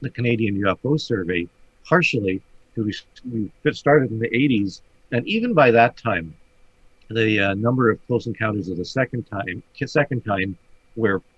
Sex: male